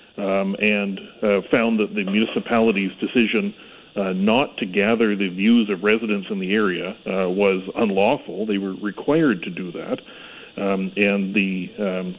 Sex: male